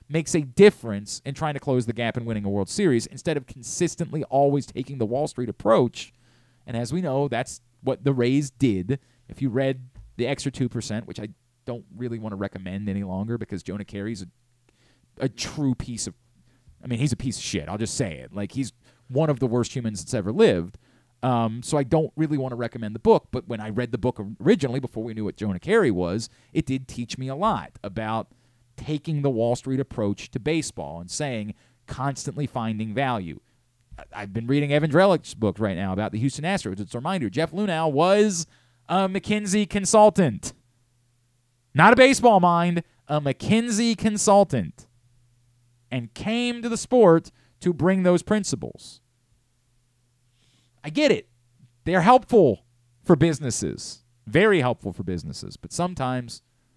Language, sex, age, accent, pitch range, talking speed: English, male, 30-49, American, 110-145 Hz, 180 wpm